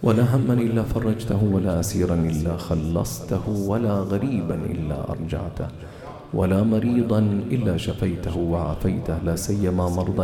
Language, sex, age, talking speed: English, male, 40-59, 115 wpm